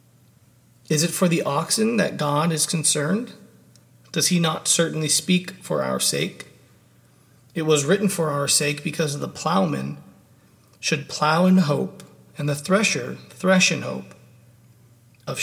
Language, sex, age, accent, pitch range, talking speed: English, male, 40-59, American, 145-170 Hz, 145 wpm